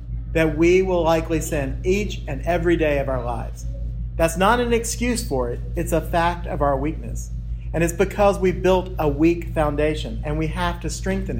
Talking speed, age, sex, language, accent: 195 wpm, 40-59, male, English, American